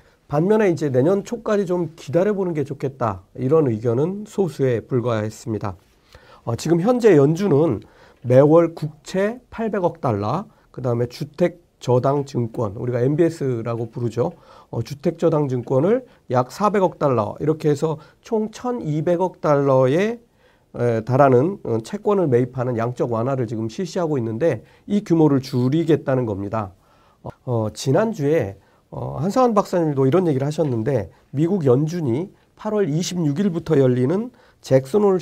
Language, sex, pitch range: Korean, male, 125-180 Hz